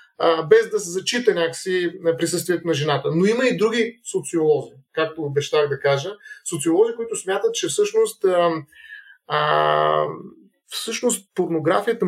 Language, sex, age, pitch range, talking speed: Bulgarian, male, 30-49, 155-195 Hz, 125 wpm